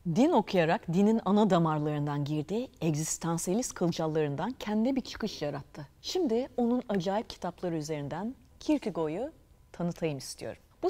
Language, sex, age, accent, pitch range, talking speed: Turkish, female, 40-59, native, 155-230 Hz, 115 wpm